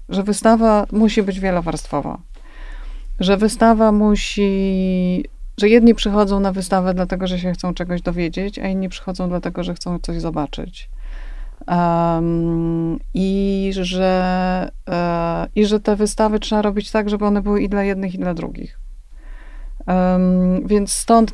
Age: 30-49